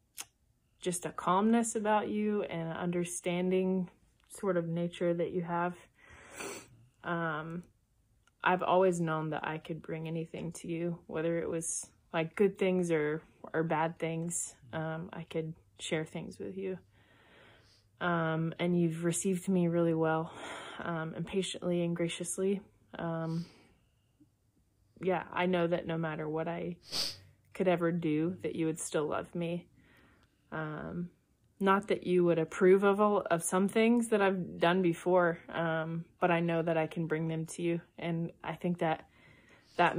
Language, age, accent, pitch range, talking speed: English, 20-39, American, 160-180 Hz, 155 wpm